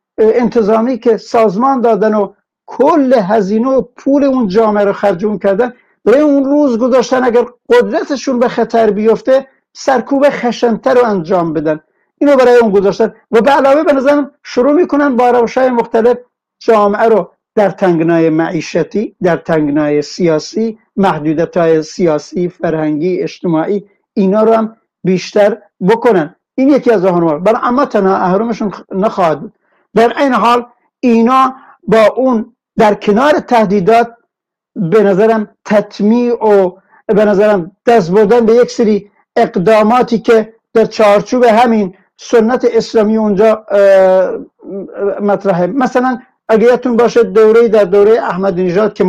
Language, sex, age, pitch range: Persian, male, 60-79, 195-240 Hz